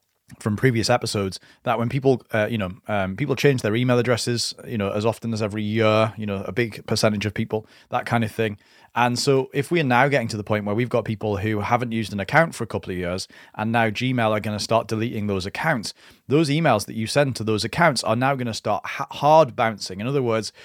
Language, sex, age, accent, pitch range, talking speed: English, male, 30-49, British, 105-125 Hz, 245 wpm